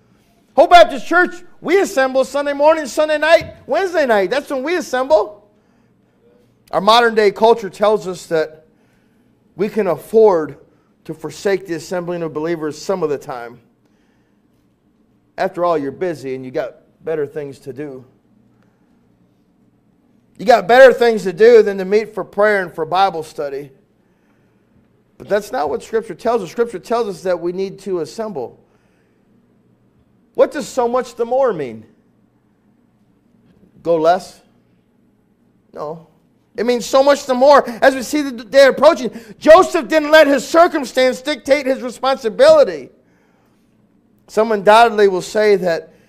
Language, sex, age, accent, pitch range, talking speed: English, male, 40-59, American, 170-265 Hz, 145 wpm